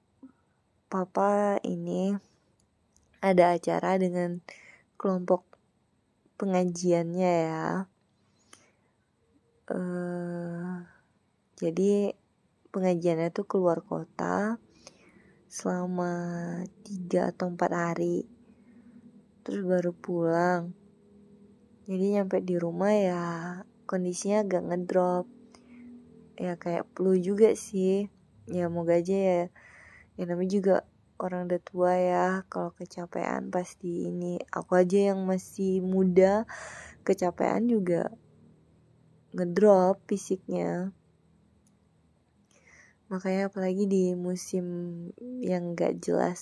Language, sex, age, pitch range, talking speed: Indonesian, female, 20-39, 175-195 Hz, 85 wpm